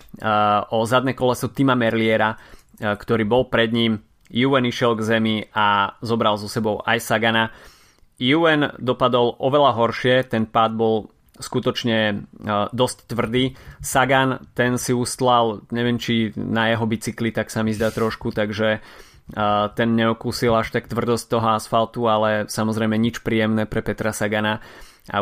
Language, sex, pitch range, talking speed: Slovak, male, 110-120 Hz, 140 wpm